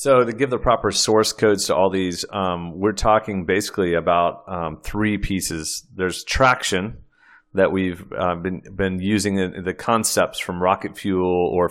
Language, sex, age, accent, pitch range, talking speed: English, male, 30-49, American, 90-110 Hz, 170 wpm